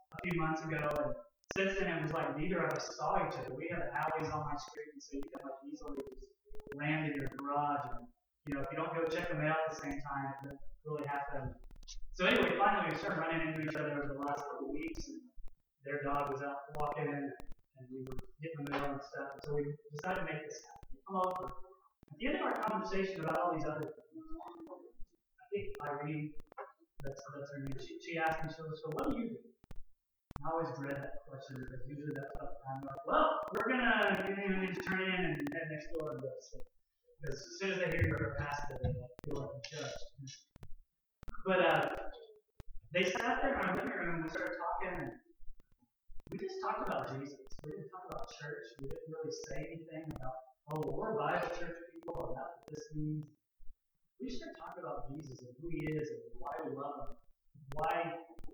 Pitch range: 140-185 Hz